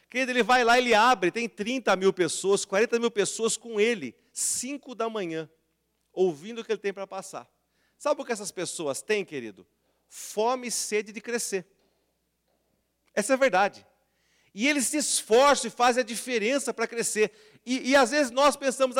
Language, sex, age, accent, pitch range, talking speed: Portuguese, male, 40-59, Brazilian, 195-250 Hz, 180 wpm